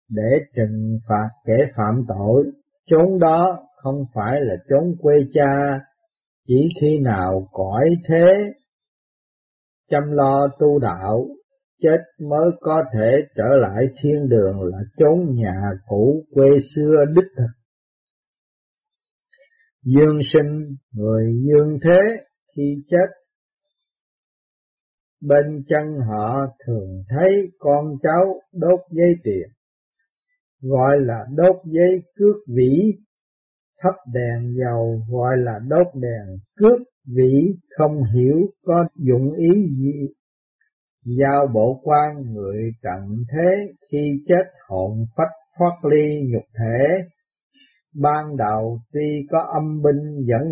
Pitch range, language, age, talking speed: 120-175 Hz, Vietnamese, 50-69, 115 wpm